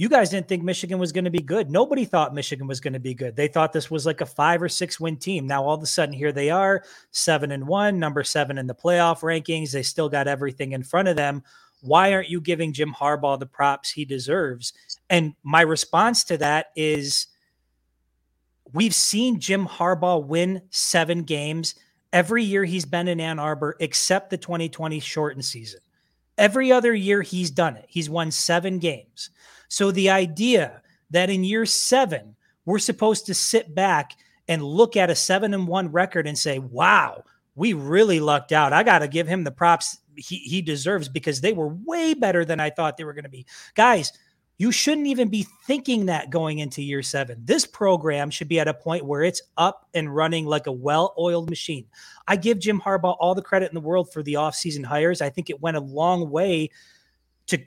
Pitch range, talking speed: 150-185 Hz, 205 wpm